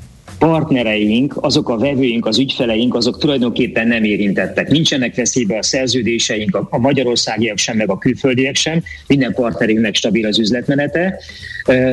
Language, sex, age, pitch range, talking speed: Hungarian, male, 30-49, 110-140 Hz, 140 wpm